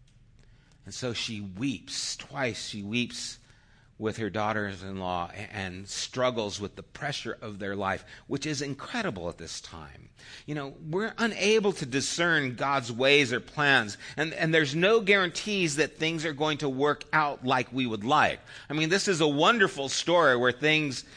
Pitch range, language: 115-155 Hz, English